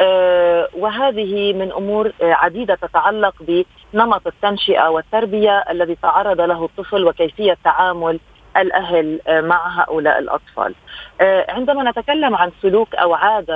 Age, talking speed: 40-59, 105 wpm